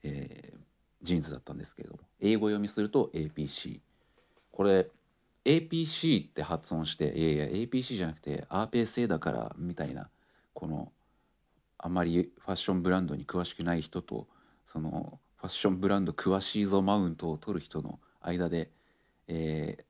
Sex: male